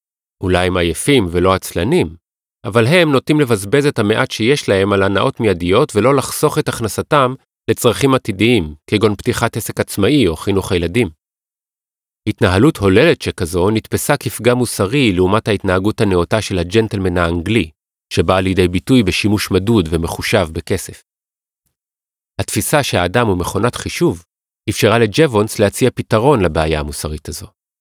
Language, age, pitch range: Hebrew, 40-59, 90-125 Hz